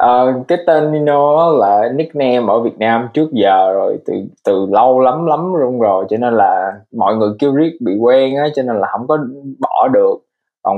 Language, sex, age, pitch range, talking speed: Vietnamese, male, 20-39, 110-140 Hz, 205 wpm